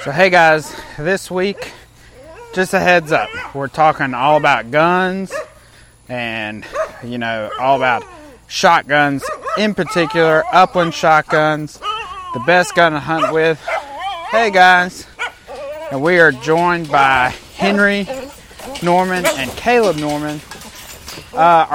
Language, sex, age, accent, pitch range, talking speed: English, male, 30-49, American, 145-180 Hz, 120 wpm